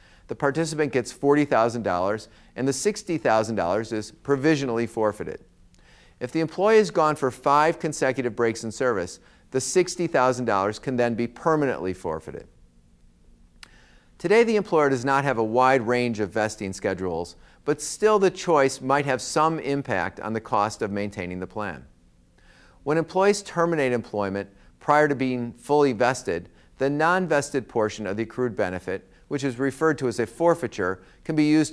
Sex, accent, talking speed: male, American, 155 wpm